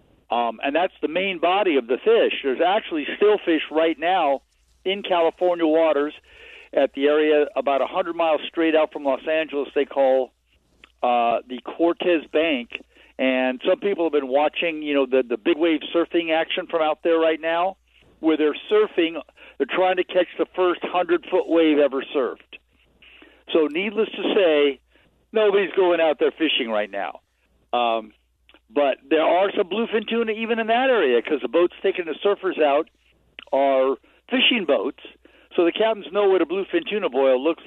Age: 60-79